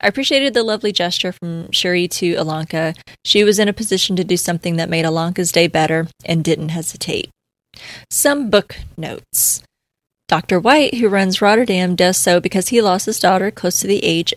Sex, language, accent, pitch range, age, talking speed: female, English, American, 170-195 Hz, 20-39, 185 wpm